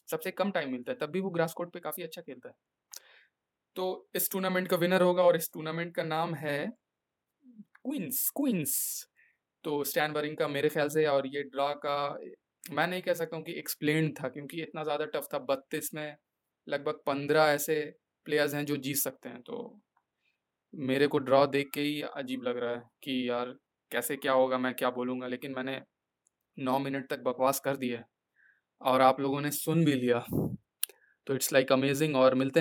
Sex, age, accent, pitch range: male, 20-39, native, 135-160 Hz